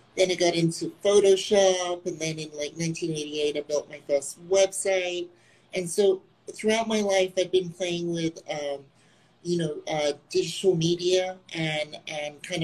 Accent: American